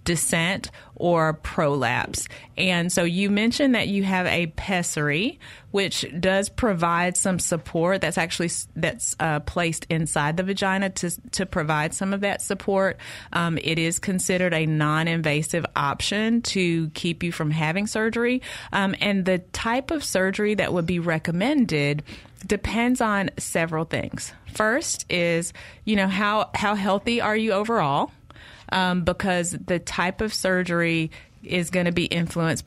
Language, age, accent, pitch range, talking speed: English, 30-49, American, 160-195 Hz, 145 wpm